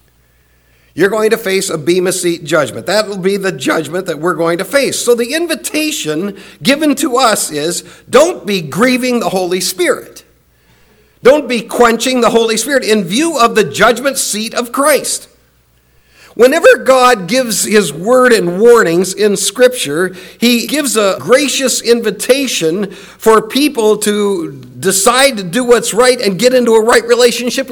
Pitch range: 190-250 Hz